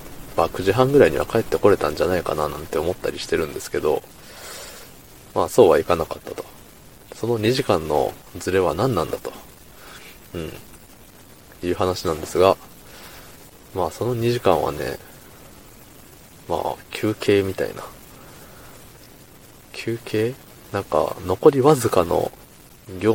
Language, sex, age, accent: Japanese, male, 20-39, native